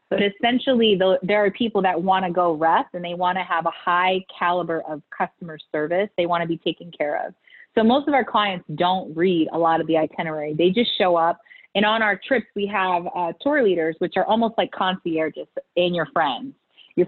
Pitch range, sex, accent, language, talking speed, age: 170-205 Hz, female, American, English, 220 wpm, 30-49